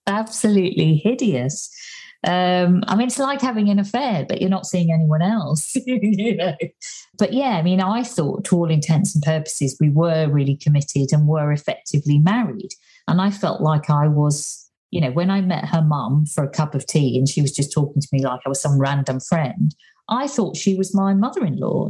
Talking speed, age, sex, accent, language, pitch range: 195 wpm, 50-69, female, British, English, 150-205 Hz